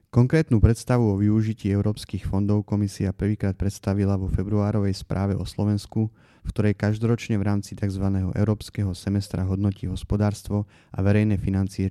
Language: Slovak